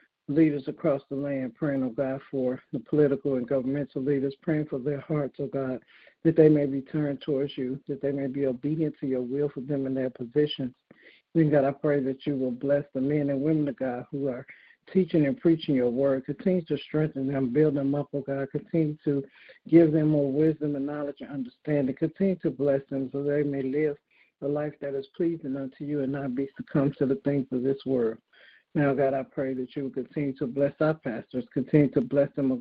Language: English